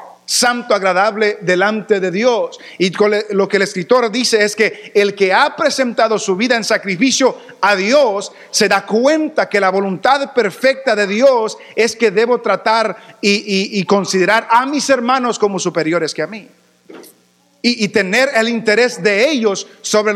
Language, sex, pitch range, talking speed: English, male, 175-225 Hz, 165 wpm